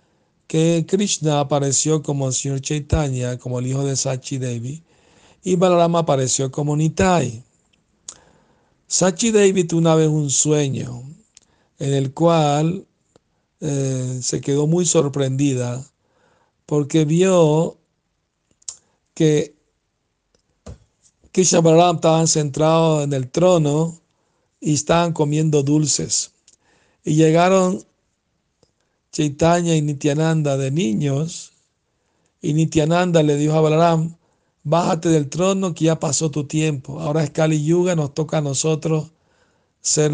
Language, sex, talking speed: Spanish, male, 115 wpm